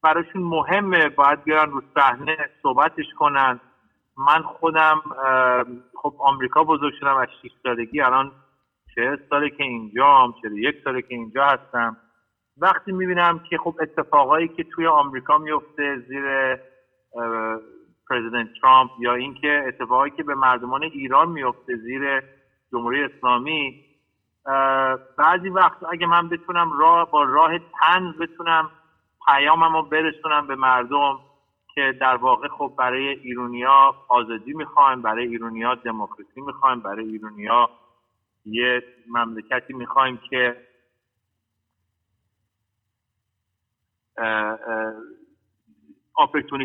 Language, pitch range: Persian, 120-155 Hz